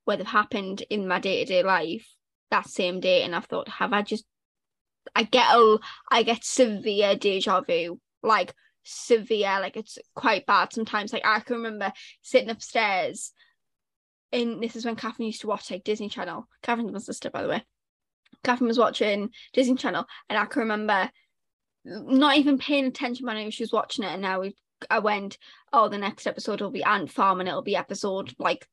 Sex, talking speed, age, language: female, 190 wpm, 20-39, English